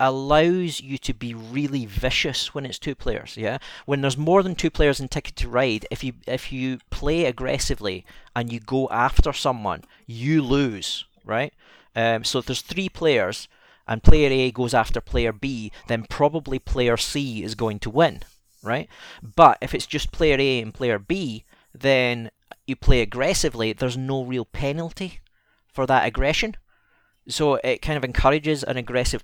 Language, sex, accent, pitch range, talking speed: English, male, British, 115-140 Hz, 170 wpm